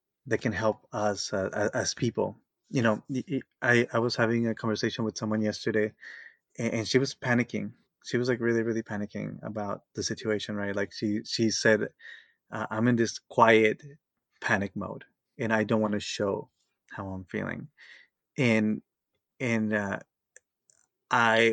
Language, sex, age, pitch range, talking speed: English, male, 20-39, 110-130 Hz, 155 wpm